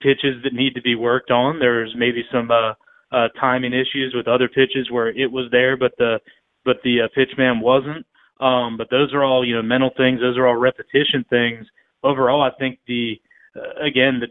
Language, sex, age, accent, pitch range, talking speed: English, male, 30-49, American, 120-135 Hz, 210 wpm